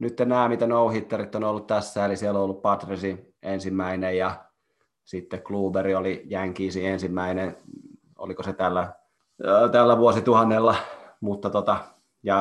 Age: 30-49